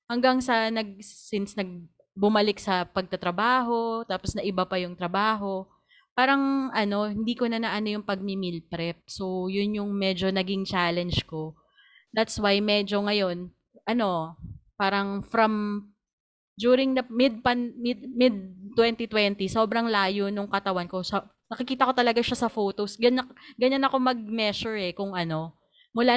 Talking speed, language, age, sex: 140 wpm, Filipino, 30-49, female